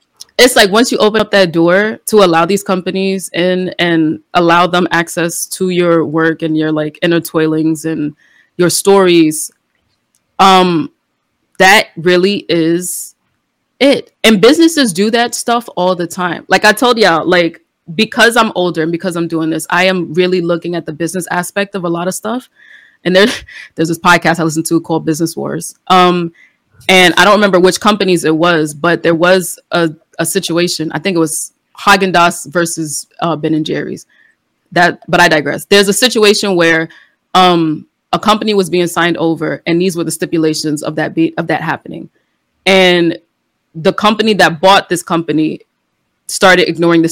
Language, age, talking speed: English, 20-39, 175 wpm